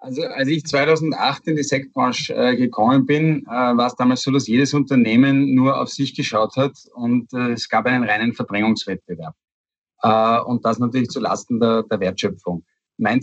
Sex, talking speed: male, 180 wpm